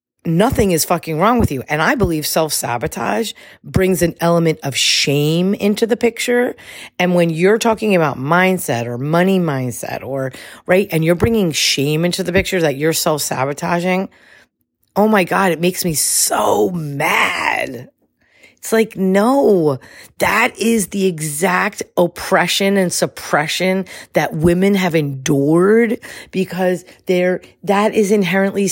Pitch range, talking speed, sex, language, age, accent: 160-200 Hz, 140 wpm, female, English, 40-59, American